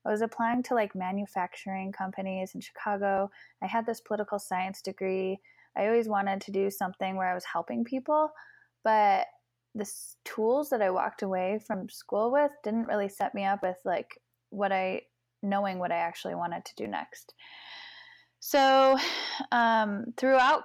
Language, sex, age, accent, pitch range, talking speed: English, female, 10-29, American, 190-235 Hz, 165 wpm